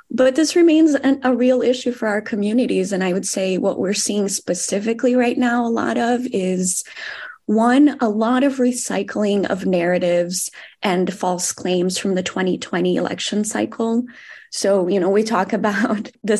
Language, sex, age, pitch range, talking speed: English, female, 20-39, 185-230 Hz, 165 wpm